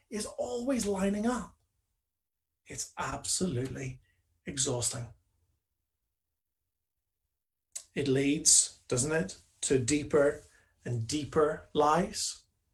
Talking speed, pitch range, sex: 75 wpm, 90-145 Hz, male